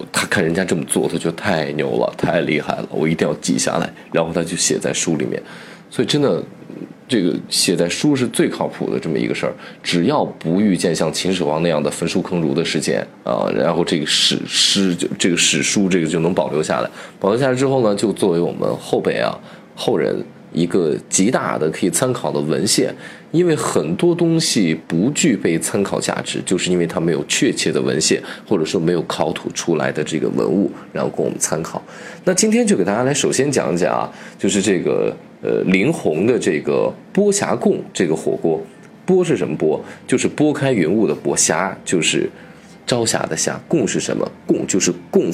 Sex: male